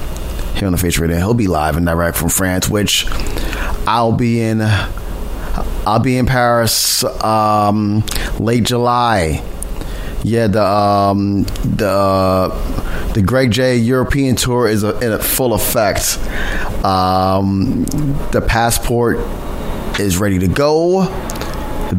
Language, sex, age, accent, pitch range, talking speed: English, male, 30-49, American, 85-120 Hz, 120 wpm